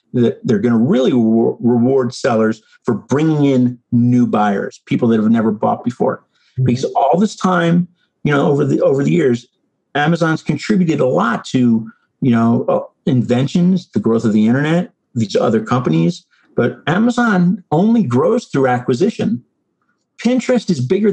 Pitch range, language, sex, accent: 130-210 Hz, English, male, American